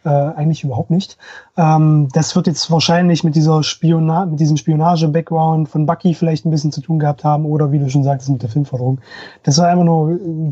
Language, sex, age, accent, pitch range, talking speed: German, male, 20-39, German, 155-190 Hz, 210 wpm